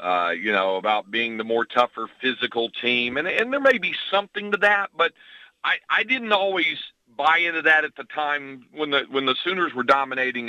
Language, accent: English, American